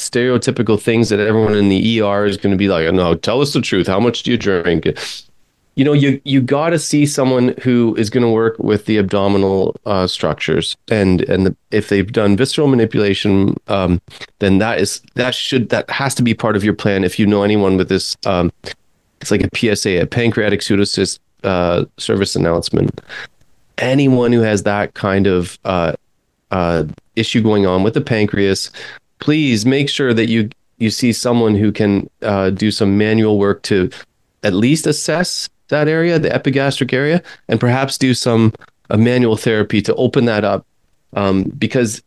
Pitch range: 100-130 Hz